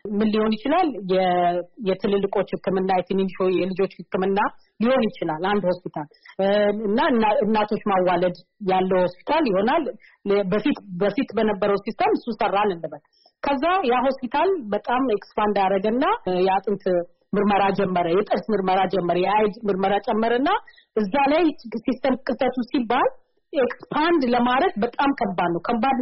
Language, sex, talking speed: Amharic, female, 105 wpm